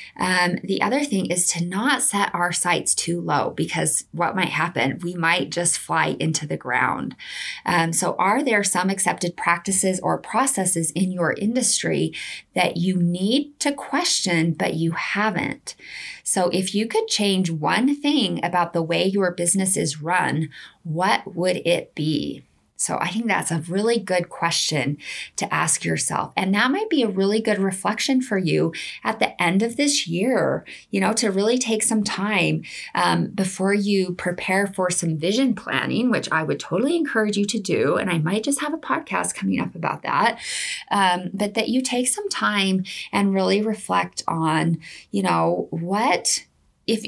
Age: 20-39